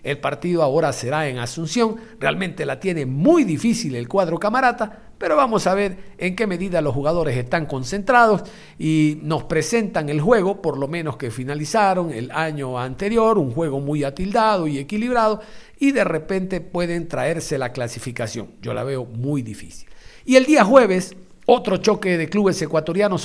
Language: Spanish